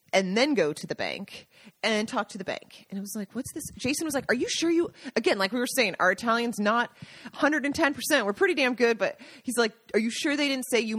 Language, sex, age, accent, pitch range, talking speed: English, female, 30-49, American, 185-250 Hz, 255 wpm